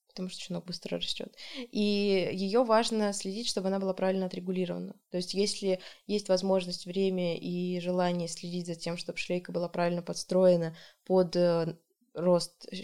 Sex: female